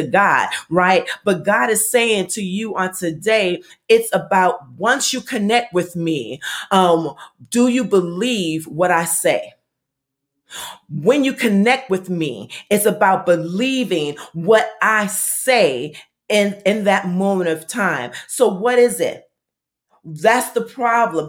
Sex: female